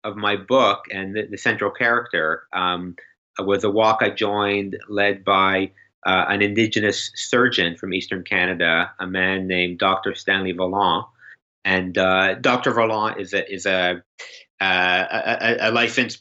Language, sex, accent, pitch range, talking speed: English, male, American, 95-110 Hz, 150 wpm